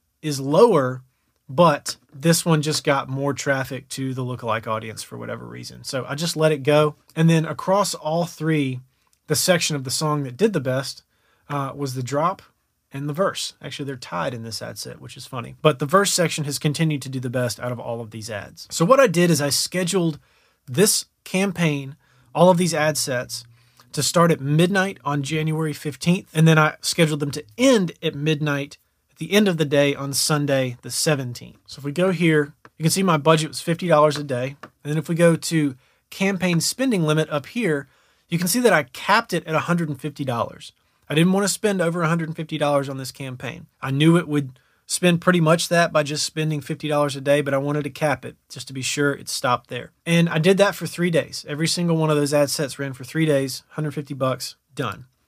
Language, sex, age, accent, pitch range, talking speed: English, male, 30-49, American, 135-165 Hz, 215 wpm